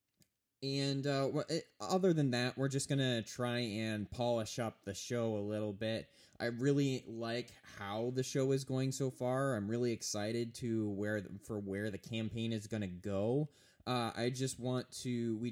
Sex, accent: male, American